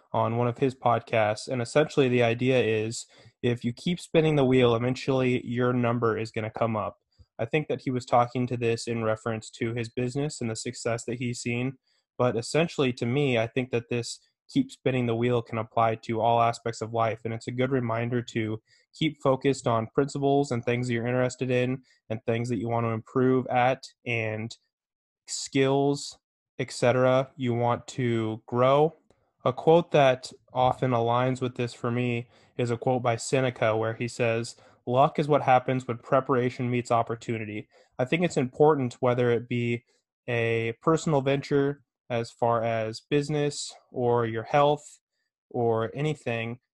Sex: male